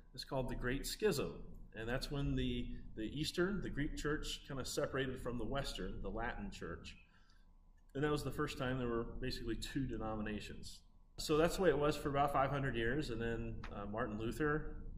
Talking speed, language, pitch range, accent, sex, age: 195 wpm, English, 95-125 Hz, American, male, 30-49